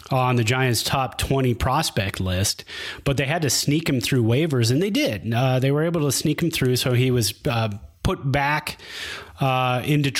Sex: male